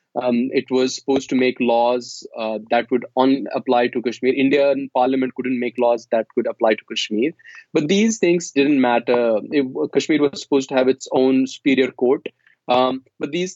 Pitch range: 125-155 Hz